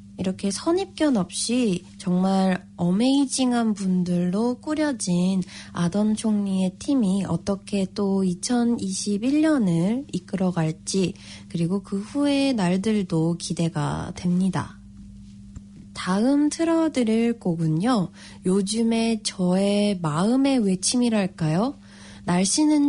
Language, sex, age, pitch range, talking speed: English, female, 20-39, 180-245 Hz, 75 wpm